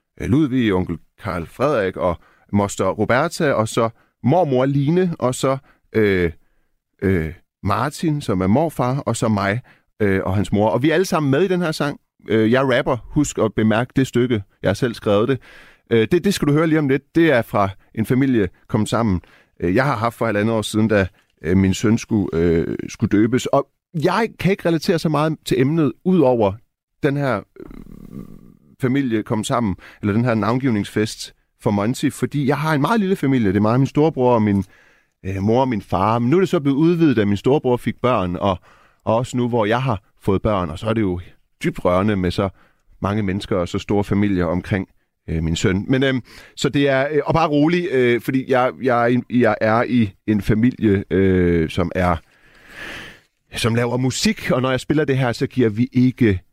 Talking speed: 210 wpm